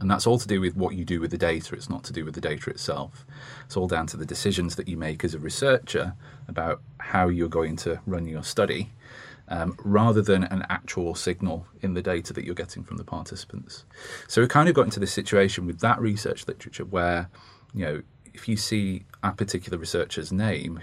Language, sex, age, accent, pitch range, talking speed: English, male, 30-49, British, 85-110 Hz, 220 wpm